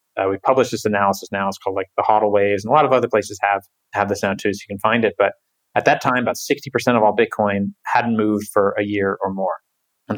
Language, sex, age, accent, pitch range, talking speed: English, male, 20-39, American, 100-115 Hz, 265 wpm